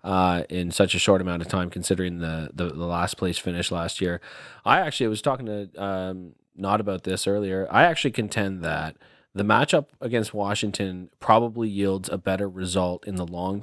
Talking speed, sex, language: 190 wpm, male, English